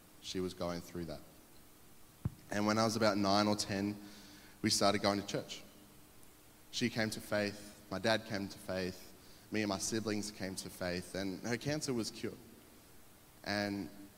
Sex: male